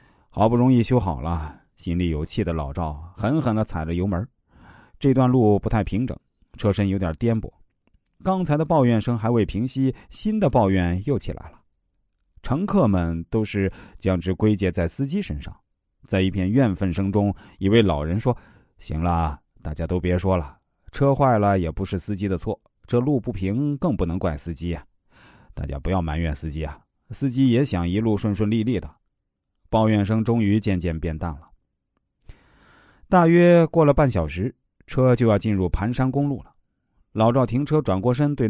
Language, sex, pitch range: Chinese, male, 90-130 Hz